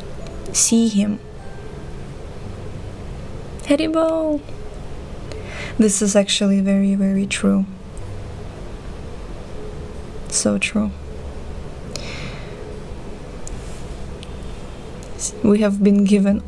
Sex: female